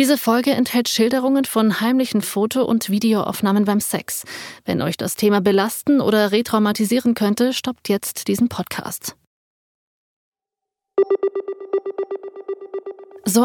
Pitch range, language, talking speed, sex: 190-245 Hz, German, 105 wpm, female